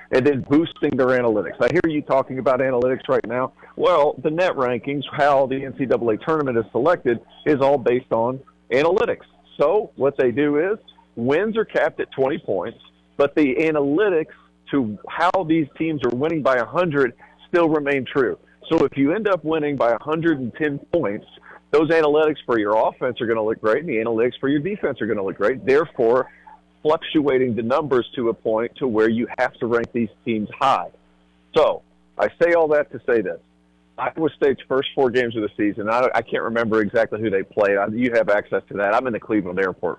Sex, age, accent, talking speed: male, 50-69, American, 200 wpm